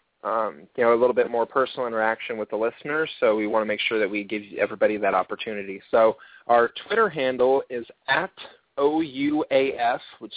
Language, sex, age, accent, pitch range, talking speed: English, male, 20-39, American, 115-135 Hz, 185 wpm